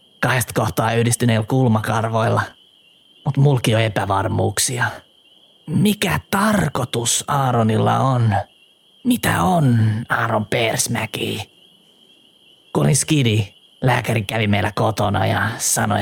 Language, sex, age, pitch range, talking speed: Finnish, male, 30-49, 110-155 Hz, 90 wpm